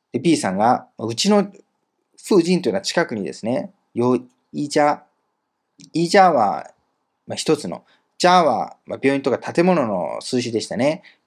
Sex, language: male, Japanese